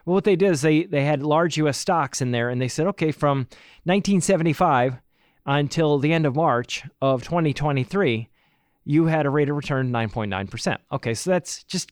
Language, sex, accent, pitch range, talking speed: English, male, American, 135-185 Hz, 185 wpm